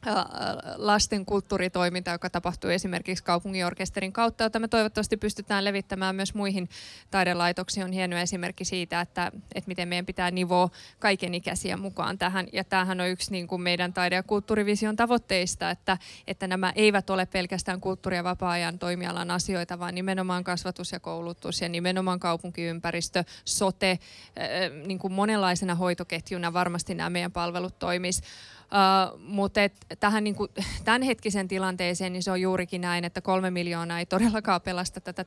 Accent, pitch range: native, 180-195 Hz